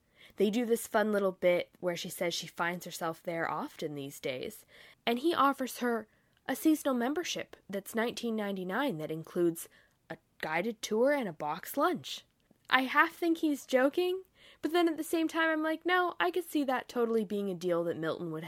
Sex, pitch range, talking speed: female, 170-235 Hz, 200 wpm